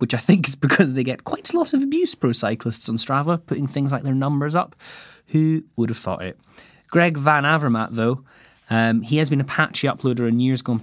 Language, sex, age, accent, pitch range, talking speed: English, male, 20-39, British, 100-135 Hz, 225 wpm